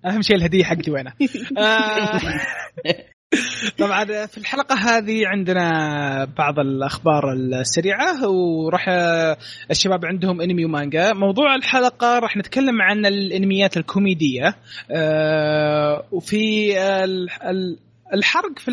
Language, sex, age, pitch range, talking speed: Arabic, male, 20-39, 150-210 Hz, 90 wpm